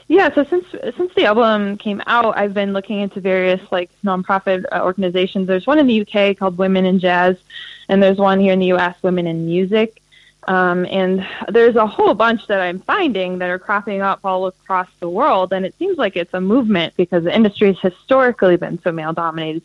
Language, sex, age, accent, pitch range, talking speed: English, female, 20-39, American, 175-215 Hz, 205 wpm